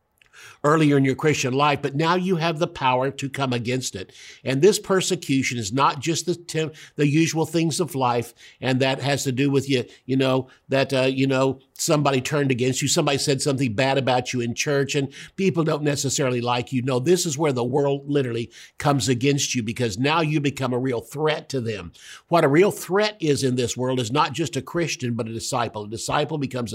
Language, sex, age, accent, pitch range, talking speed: English, male, 50-69, American, 125-155 Hz, 215 wpm